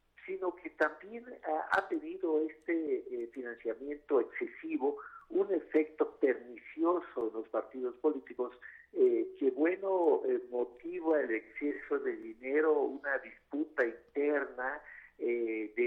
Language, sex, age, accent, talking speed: Spanish, male, 50-69, Mexican, 110 wpm